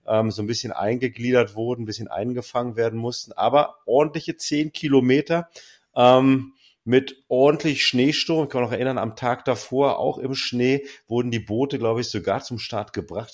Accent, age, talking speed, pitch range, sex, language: German, 40-59, 170 wpm, 110-130 Hz, male, German